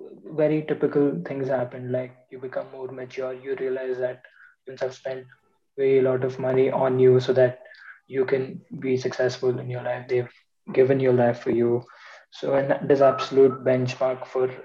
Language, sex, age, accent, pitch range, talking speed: English, male, 20-39, Indian, 130-145 Hz, 175 wpm